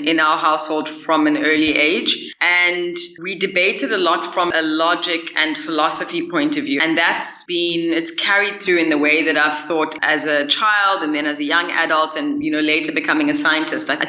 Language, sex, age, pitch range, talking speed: English, female, 20-39, 160-260 Hz, 210 wpm